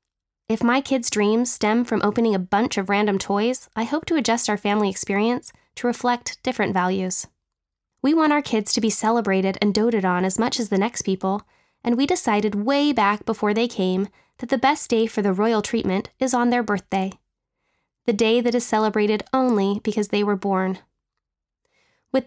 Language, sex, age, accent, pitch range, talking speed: English, female, 10-29, American, 200-245 Hz, 190 wpm